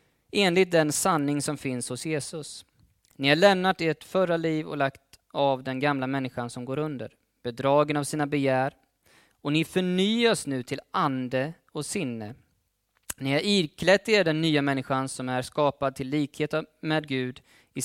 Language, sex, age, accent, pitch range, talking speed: Swedish, male, 20-39, native, 110-160 Hz, 165 wpm